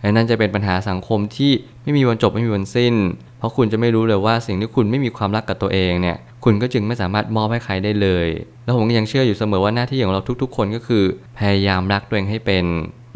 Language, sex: Thai, male